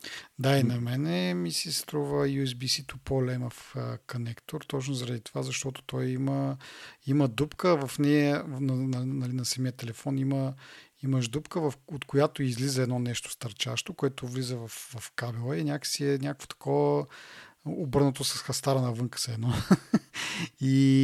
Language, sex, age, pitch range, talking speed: Bulgarian, male, 40-59, 125-145 Hz, 145 wpm